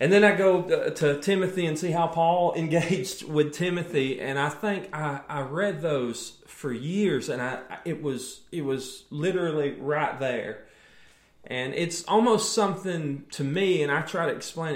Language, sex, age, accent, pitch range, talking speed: English, male, 30-49, American, 140-185 Hz, 170 wpm